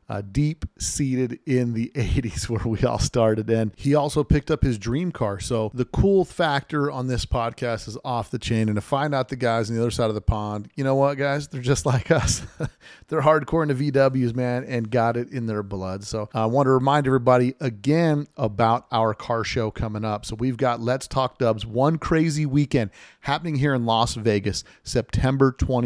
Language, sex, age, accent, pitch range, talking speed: English, male, 40-59, American, 110-135 Hz, 205 wpm